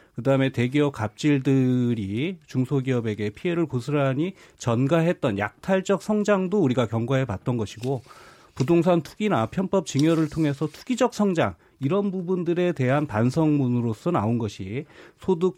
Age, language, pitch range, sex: 30-49, Korean, 125-175 Hz, male